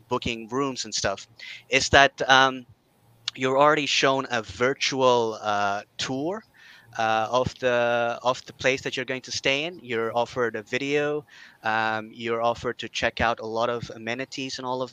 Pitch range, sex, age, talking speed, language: 115-130 Hz, male, 30-49, 175 wpm, English